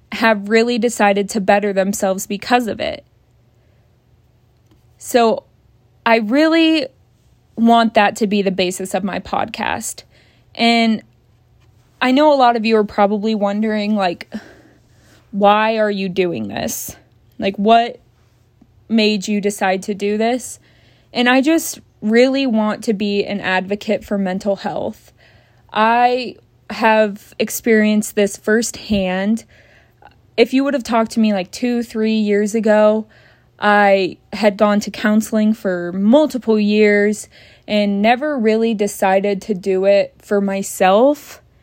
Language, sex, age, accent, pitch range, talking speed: English, female, 20-39, American, 195-225 Hz, 130 wpm